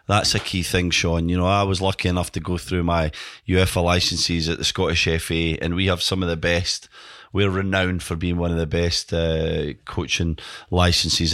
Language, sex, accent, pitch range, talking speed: English, male, British, 85-100 Hz, 205 wpm